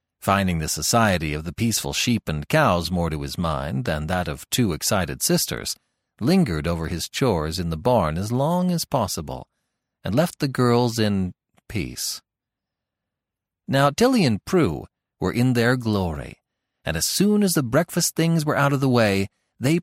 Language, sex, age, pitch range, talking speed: English, male, 40-59, 90-140 Hz, 175 wpm